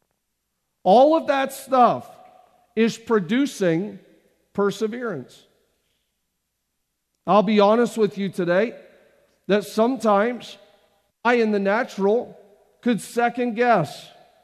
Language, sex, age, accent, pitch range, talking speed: English, male, 50-69, American, 200-235 Hz, 90 wpm